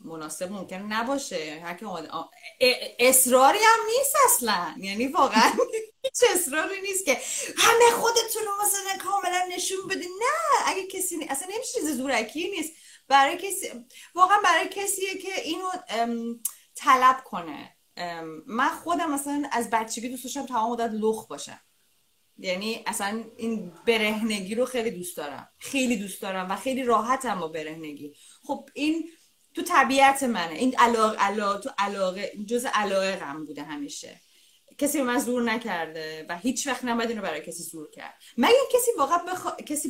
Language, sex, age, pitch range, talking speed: Persian, female, 30-49, 200-315 Hz, 155 wpm